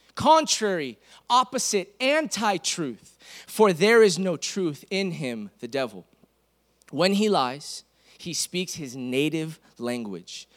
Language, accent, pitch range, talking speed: English, American, 120-160 Hz, 115 wpm